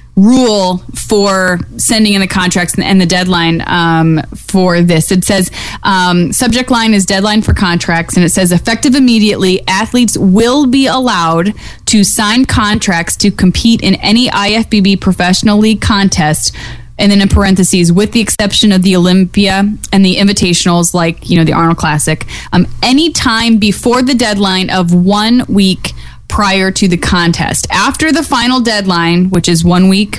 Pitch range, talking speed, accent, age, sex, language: 175-220 Hz, 160 wpm, American, 20-39, female, English